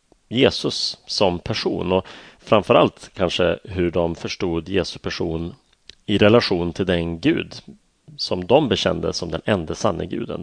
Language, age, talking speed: Swedish, 30-49, 140 wpm